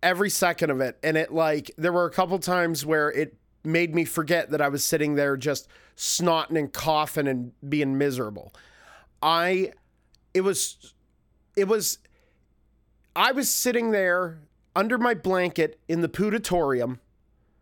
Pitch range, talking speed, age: 150-180 Hz, 150 wpm, 30-49